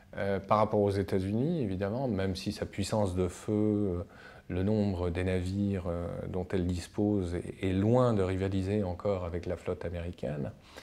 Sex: male